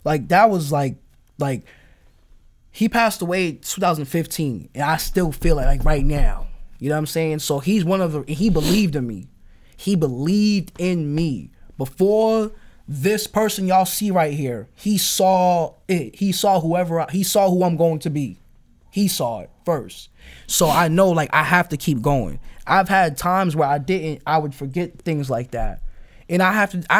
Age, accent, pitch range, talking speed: 20-39, American, 140-180 Hz, 190 wpm